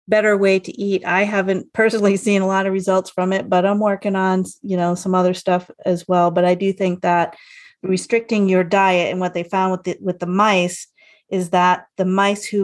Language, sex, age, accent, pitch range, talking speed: English, female, 30-49, American, 180-200 Hz, 225 wpm